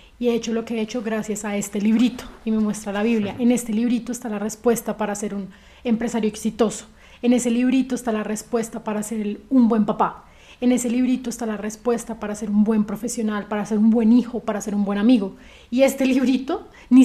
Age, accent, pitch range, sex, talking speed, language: 30-49, Colombian, 210-240 Hz, female, 220 wpm, Spanish